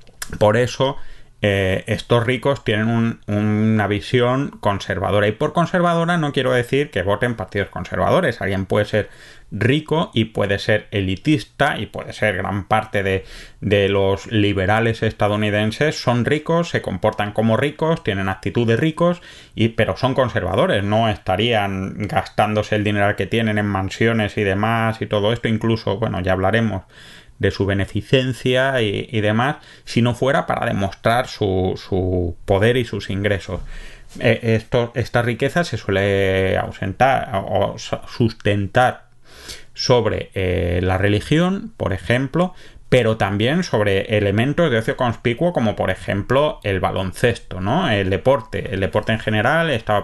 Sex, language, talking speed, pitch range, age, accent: male, Spanish, 140 wpm, 100-125 Hz, 30-49, Spanish